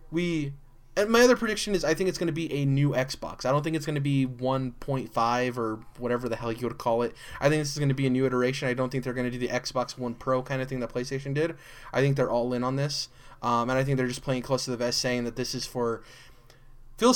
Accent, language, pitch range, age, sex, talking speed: American, English, 120-135 Hz, 20-39, male, 285 wpm